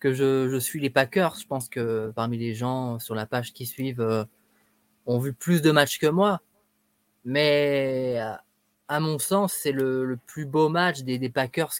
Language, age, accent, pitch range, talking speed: French, 20-39, French, 130-155 Hz, 195 wpm